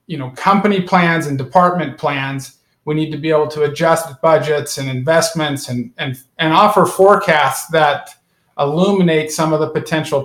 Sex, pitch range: male, 145-170 Hz